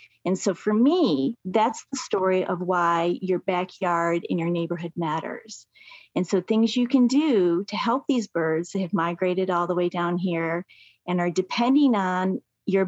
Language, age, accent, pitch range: English, 30-49, American, 175-210 Hz